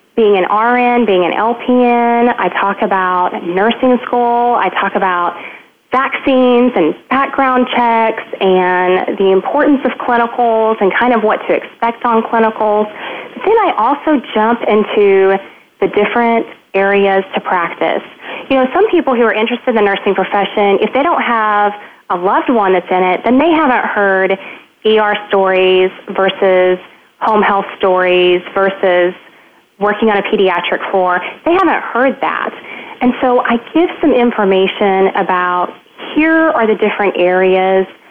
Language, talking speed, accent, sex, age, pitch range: English, 150 wpm, American, female, 20-39, 190-245 Hz